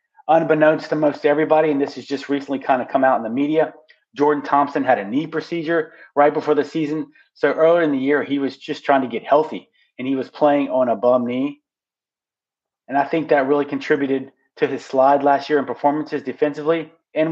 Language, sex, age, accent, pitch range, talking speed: English, male, 30-49, American, 135-155 Hz, 210 wpm